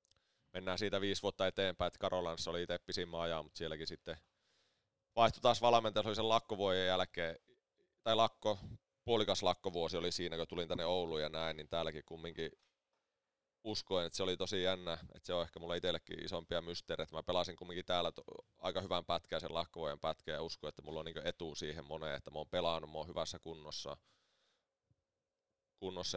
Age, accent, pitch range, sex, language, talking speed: 30-49, native, 80-95 Hz, male, Finnish, 170 wpm